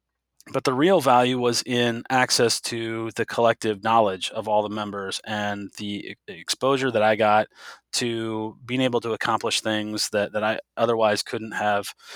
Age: 30-49